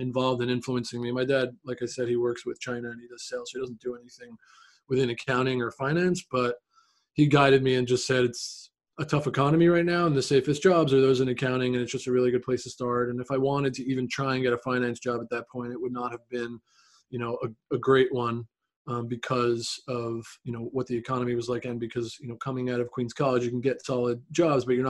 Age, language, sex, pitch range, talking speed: 20-39, English, male, 125-140 Hz, 260 wpm